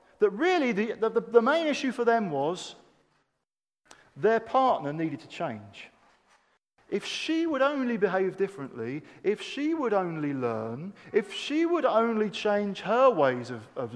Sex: male